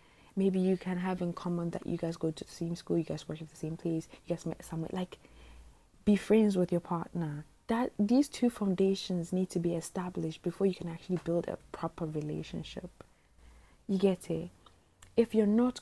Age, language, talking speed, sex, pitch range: 20-39, English, 200 wpm, female, 155-190 Hz